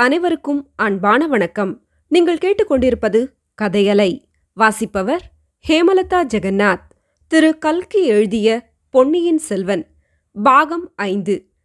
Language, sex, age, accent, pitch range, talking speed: Tamil, female, 20-39, native, 220-320 Hz, 80 wpm